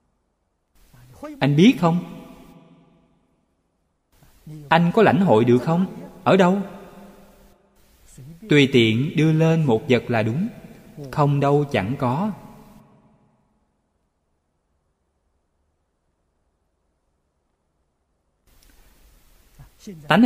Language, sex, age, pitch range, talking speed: Vietnamese, male, 20-39, 115-170 Hz, 70 wpm